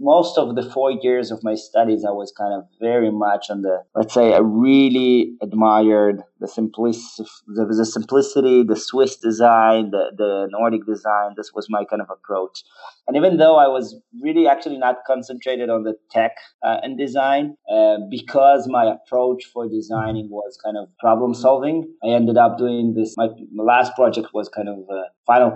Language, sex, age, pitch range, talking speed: English, male, 20-39, 110-135 Hz, 180 wpm